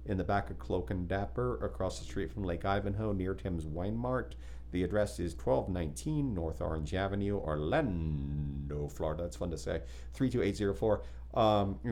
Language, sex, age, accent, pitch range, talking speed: English, male, 40-59, American, 80-105 Hz, 160 wpm